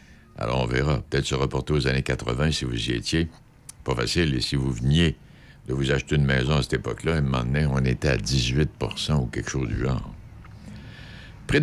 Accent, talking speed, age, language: French, 200 wpm, 60-79, French